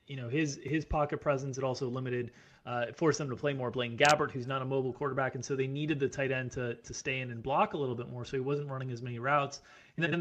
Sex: male